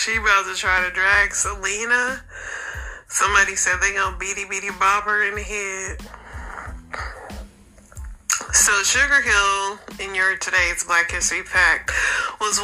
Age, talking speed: 30-49, 135 wpm